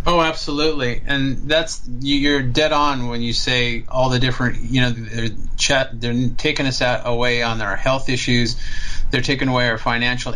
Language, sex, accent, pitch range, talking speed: English, male, American, 120-155 Hz, 170 wpm